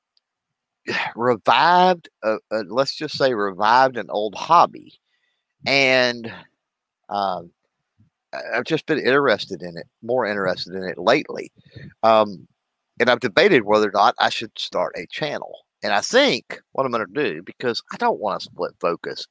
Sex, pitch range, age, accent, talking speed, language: male, 100-130 Hz, 50-69, American, 150 wpm, English